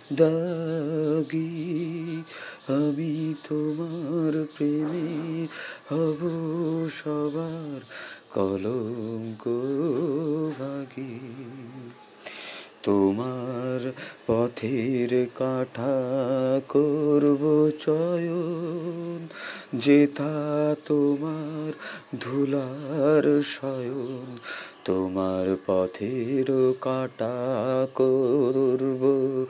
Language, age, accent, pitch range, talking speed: Bengali, 30-49, native, 135-170 Hz, 40 wpm